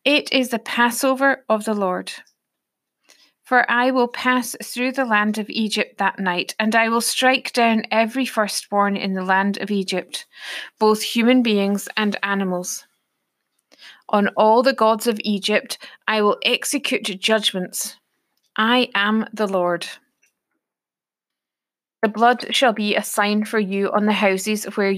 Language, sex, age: English, female, 30-49